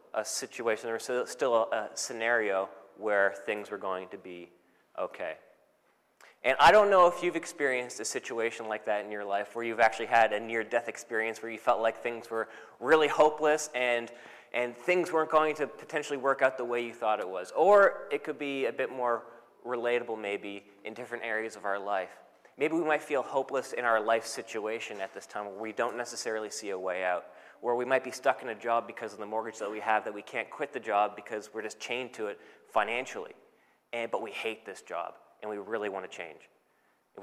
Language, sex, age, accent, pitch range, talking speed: English, male, 20-39, American, 110-140 Hz, 215 wpm